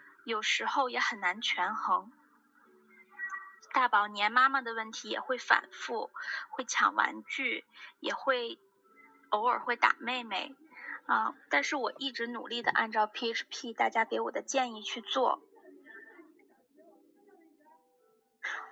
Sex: female